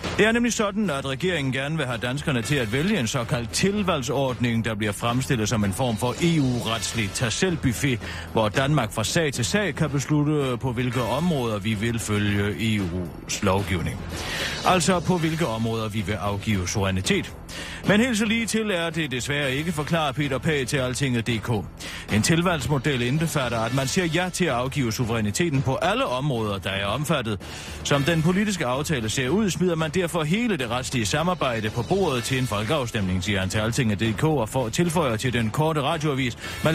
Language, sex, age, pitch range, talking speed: Danish, male, 40-59, 110-160 Hz, 175 wpm